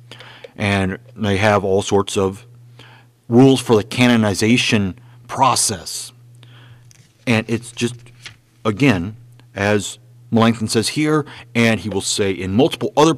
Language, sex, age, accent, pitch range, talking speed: English, male, 40-59, American, 105-125 Hz, 120 wpm